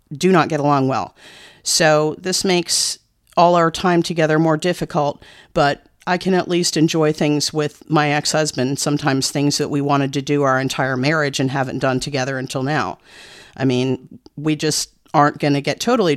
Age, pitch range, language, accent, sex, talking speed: 40-59, 140-160 Hz, English, American, female, 185 wpm